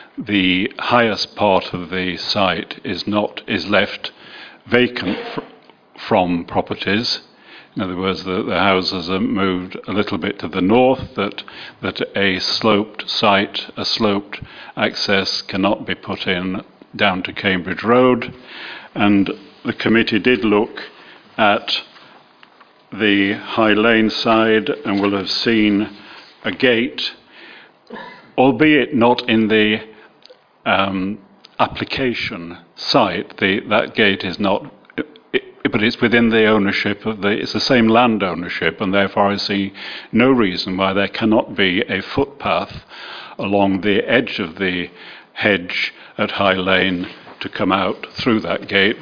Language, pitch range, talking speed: English, 95-110 Hz, 135 wpm